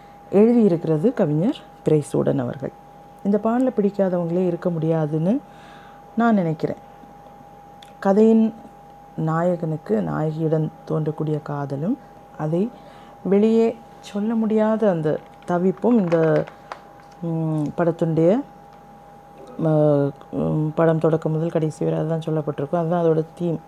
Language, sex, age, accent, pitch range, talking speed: Tamil, female, 30-49, native, 160-205 Hz, 85 wpm